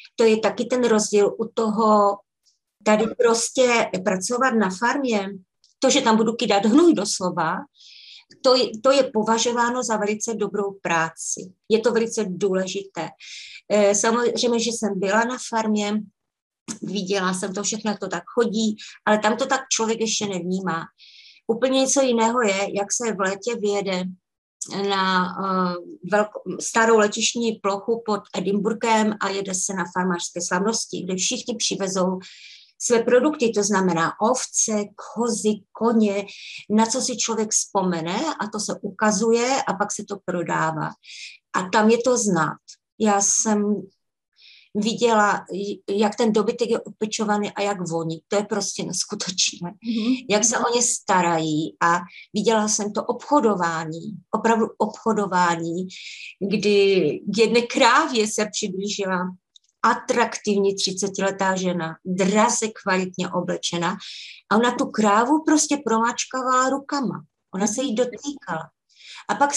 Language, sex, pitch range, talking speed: Slovak, female, 195-230 Hz, 135 wpm